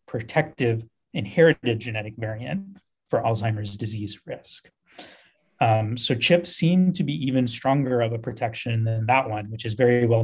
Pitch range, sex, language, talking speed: 115-130 Hz, male, English, 150 wpm